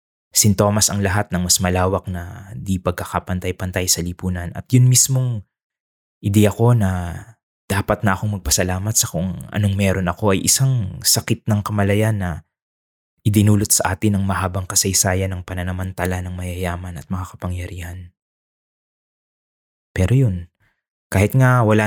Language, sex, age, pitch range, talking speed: English, male, 20-39, 90-105 Hz, 135 wpm